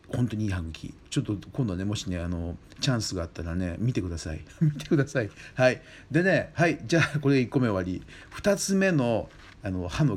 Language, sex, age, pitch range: Japanese, male, 50-69, 95-140 Hz